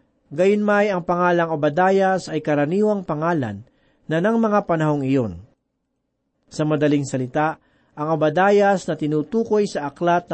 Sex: male